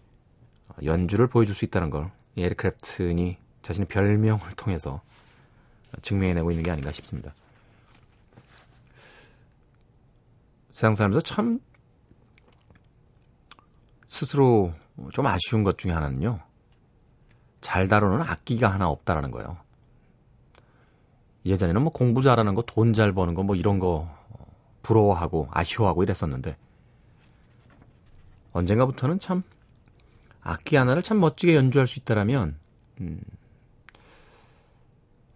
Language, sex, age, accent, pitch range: Korean, male, 40-59, native, 95-125 Hz